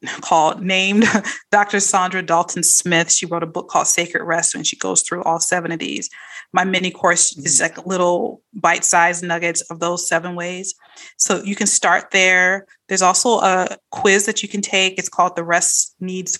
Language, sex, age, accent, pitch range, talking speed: English, female, 20-39, American, 170-195 Hz, 185 wpm